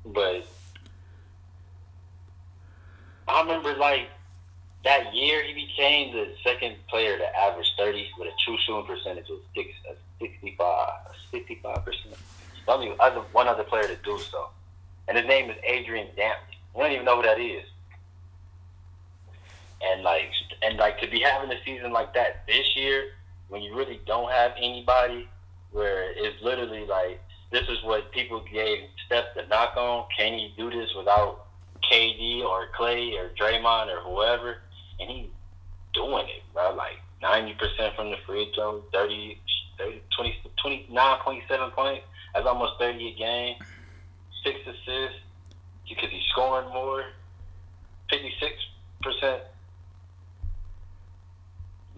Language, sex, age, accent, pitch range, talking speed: English, male, 20-39, American, 90-120 Hz, 135 wpm